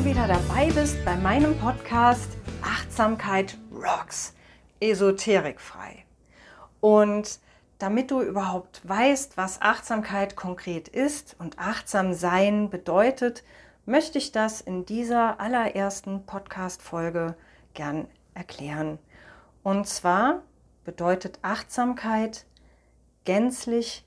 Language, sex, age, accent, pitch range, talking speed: German, female, 40-59, German, 170-210 Hz, 90 wpm